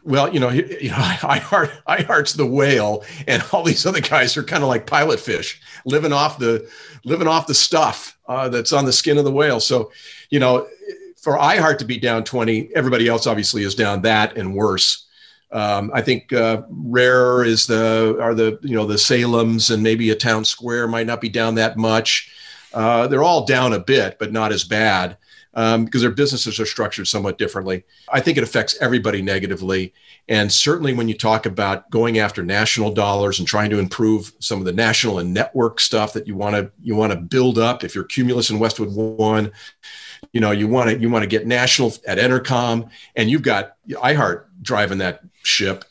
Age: 40-59